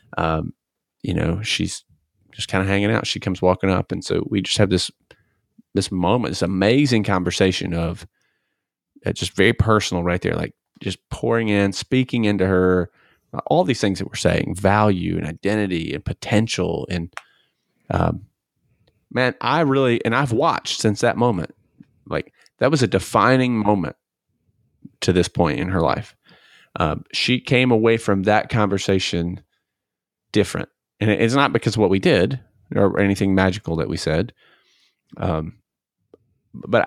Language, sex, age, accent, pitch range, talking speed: English, male, 30-49, American, 90-120 Hz, 155 wpm